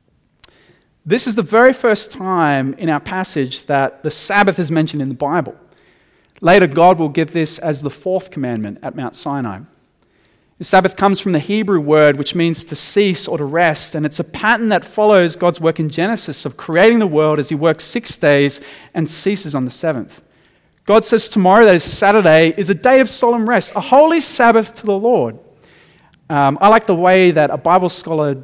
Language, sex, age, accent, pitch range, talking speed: English, male, 30-49, Australian, 150-210 Hz, 200 wpm